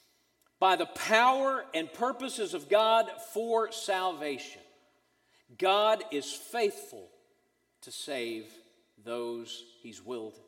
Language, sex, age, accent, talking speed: English, male, 50-69, American, 95 wpm